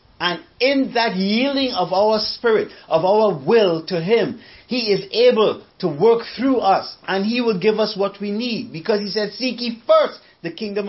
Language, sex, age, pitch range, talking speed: English, male, 50-69, 155-220 Hz, 195 wpm